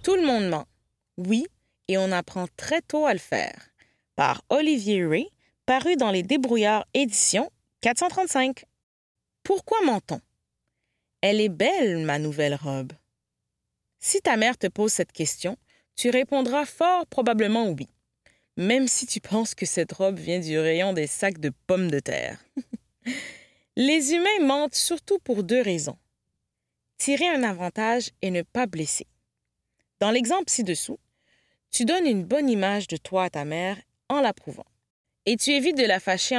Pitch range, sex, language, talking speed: 185-280 Hz, female, French, 160 wpm